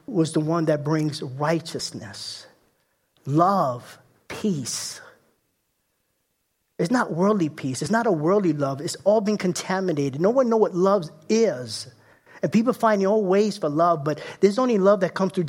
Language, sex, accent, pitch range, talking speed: English, male, American, 160-210 Hz, 165 wpm